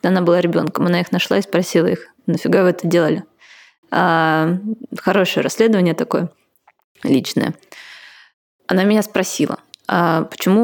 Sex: female